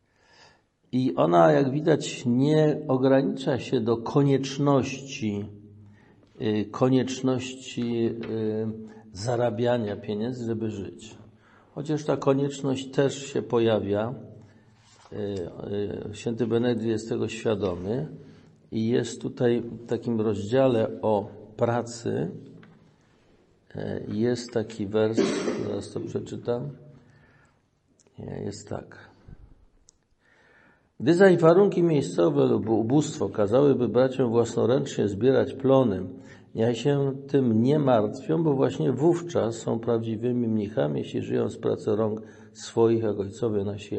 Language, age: Polish, 50-69